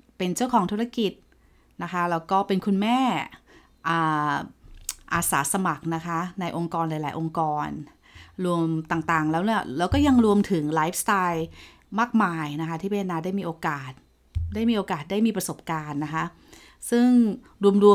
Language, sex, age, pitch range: Thai, female, 20-39, 165-210 Hz